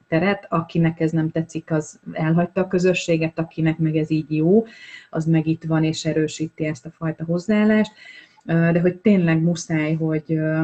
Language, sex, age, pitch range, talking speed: Hungarian, female, 30-49, 155-170 Hz, 160 wpm